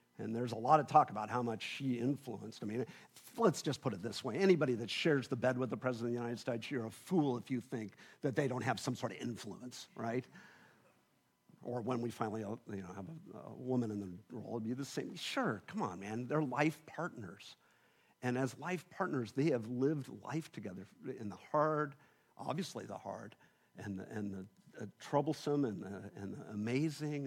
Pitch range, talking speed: 110-145 Hz, 210 wpm